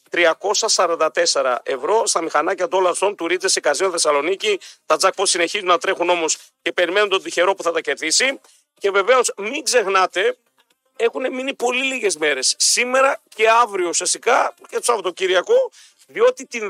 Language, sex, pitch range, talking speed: Greek, male, 175-265 Hz, 145 wpm